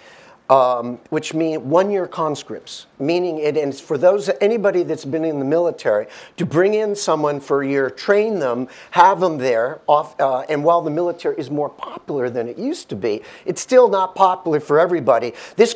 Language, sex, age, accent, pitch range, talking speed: English, male, 50-69, American, 145-205 Hz, 185 wpm